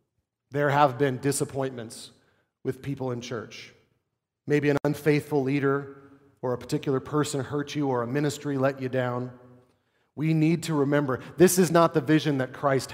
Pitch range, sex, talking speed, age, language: 130-180 Hz, male, 160 wpm, 40-59, English